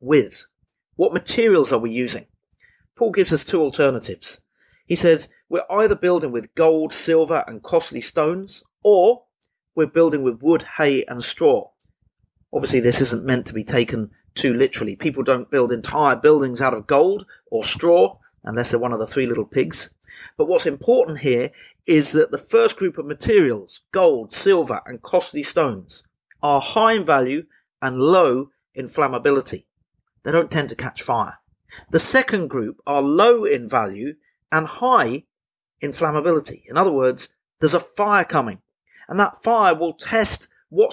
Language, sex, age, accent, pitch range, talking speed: English, male, 40-59, British, 135-200 Hz, 165 wpm